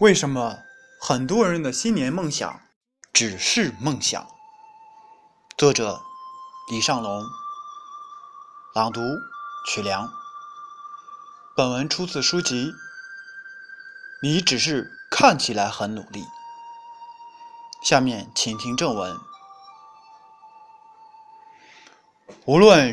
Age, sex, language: 20-39, male, Chinese